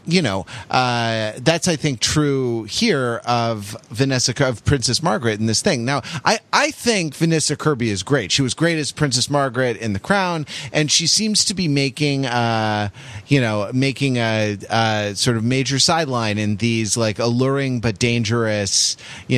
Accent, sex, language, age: American, male, English, 30-49